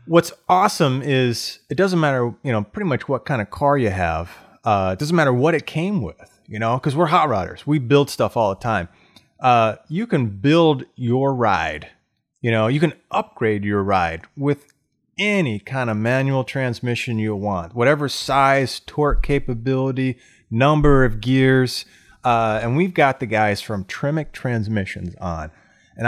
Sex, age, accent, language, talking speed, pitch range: male, 30-49, American, English, 175 wpm, 110-145 Hz